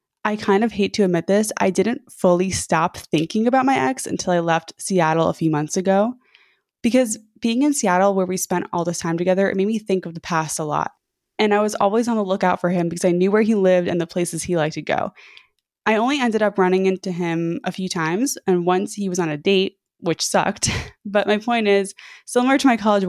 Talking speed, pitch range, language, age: 240 wpm, 175-210 Hz, English, 20-39